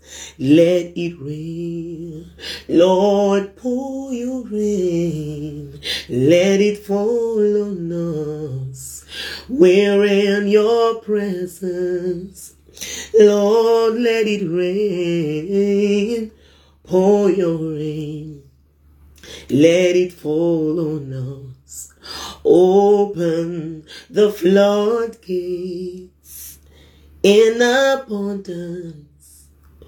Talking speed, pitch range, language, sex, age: 65 wpm, 155-210 Hz, English, male, 30-49